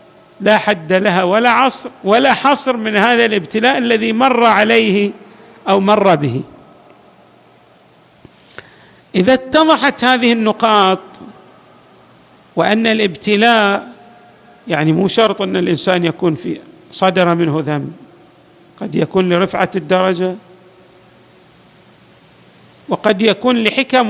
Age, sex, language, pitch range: 50-69, male, Arabic, 175-240 Hz